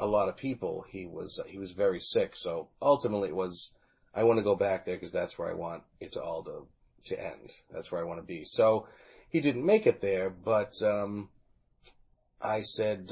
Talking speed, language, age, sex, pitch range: 215 wpm, English, 30-49, male, 95-115 Hz